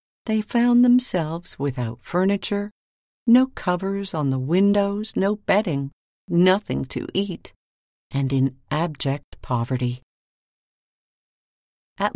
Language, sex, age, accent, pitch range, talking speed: English, female, 50-69, American, 140-215 Hz, 100 wpm